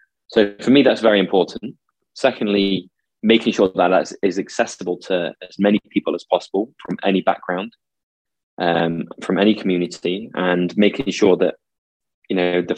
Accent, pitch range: British, 90-100 Hz